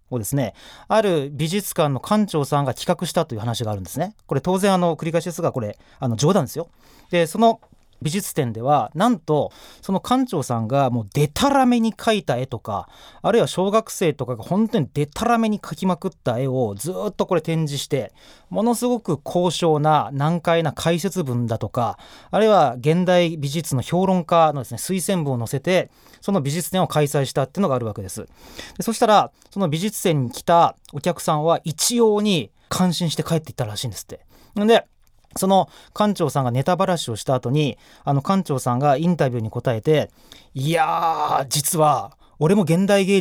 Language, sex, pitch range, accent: Japanese, male, 135-190 Hz, native